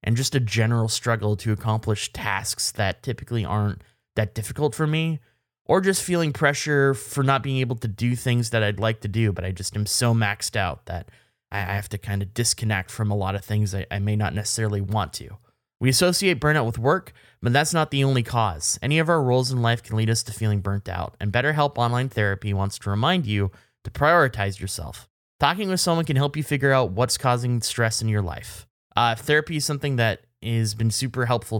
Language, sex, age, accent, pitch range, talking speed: English, male, 20-39, American, 105-130 Hz, 220 wpm